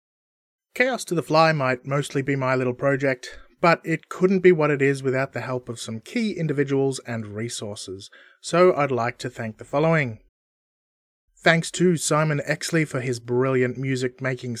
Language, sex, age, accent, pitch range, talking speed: English, male, 30-49, Australian, 125-170 Hz, 170 wpm